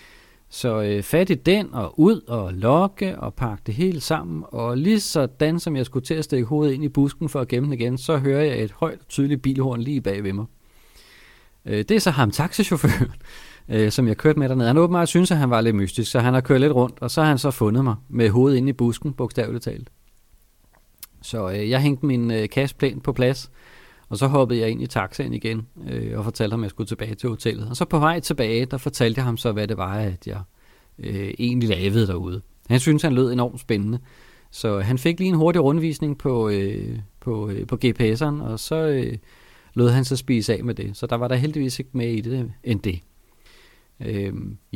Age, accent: 30-49, native